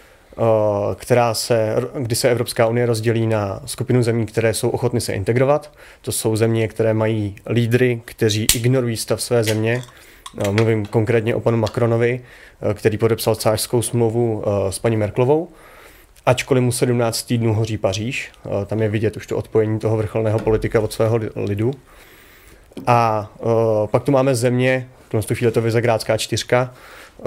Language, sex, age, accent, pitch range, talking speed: Czech, male, 30-49, native, 110-125 Hz, 145 wpm